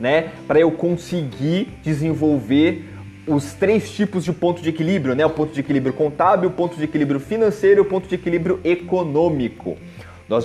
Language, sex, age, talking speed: Portuguese, male, 20-39, 170 wpm